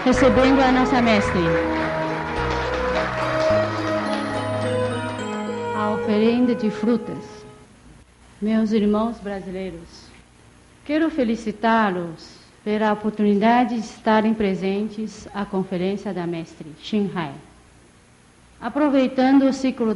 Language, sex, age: English, female, 50-69